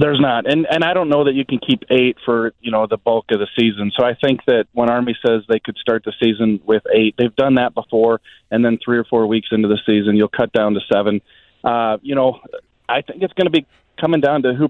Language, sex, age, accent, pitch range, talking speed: English, male, 30-49, American, 115-140 Hz, 265 wpm